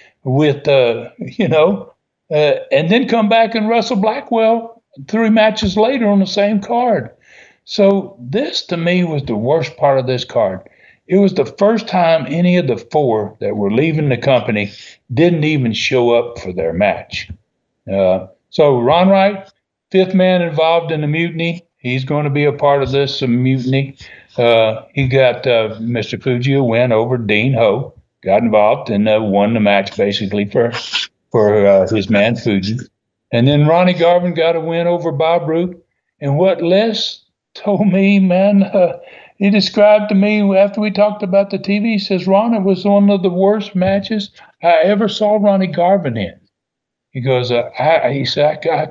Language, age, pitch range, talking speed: English, 60-79, 130-195 Hz, 175 wpm